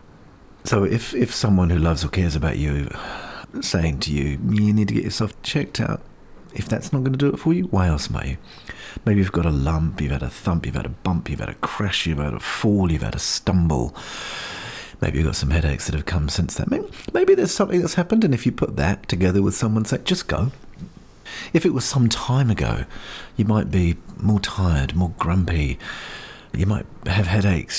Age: 40-59